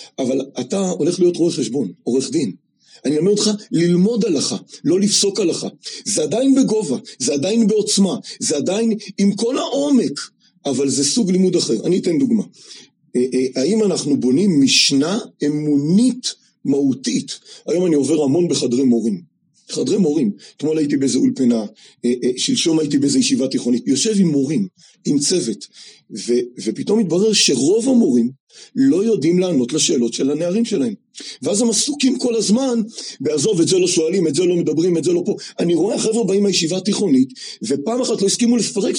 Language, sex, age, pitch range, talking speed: Hebrew, male, 40-59, 155-240 Hz, 160 wpm